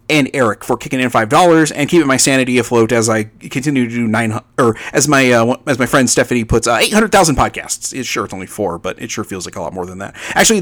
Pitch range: 110-155 Hz